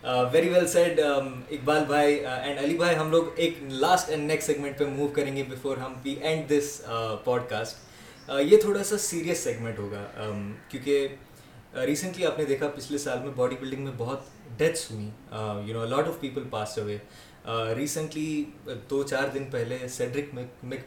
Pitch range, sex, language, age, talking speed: 120-150 Hz, male, Urdu, 20-39, 175 wpm